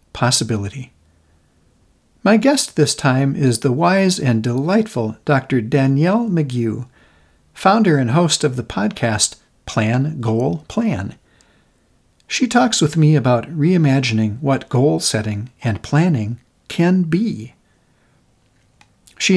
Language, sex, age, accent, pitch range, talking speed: English, male, 60-79, American, 120-170 Hz, 110 wpm